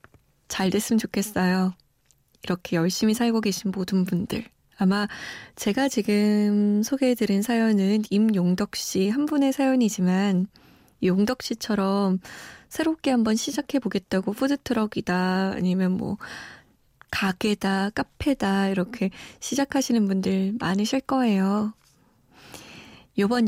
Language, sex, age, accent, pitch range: Korean, female, 20-39, native, 190-230 Hz